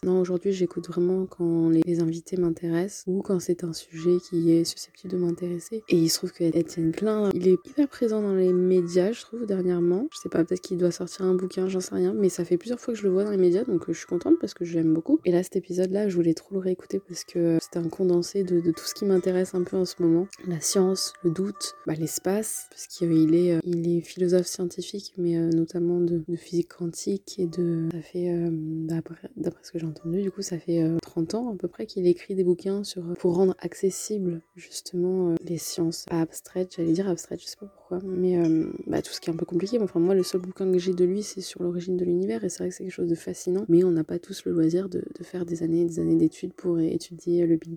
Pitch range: 170-190 Hz